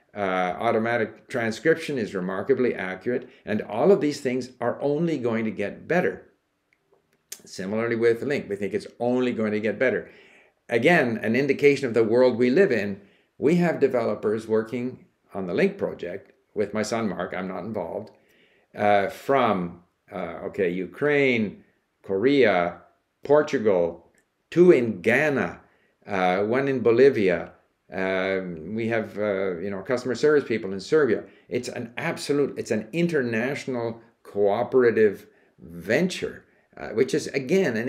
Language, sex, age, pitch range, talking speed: English, male, 60-79, 110-145 Hz, 145 wpm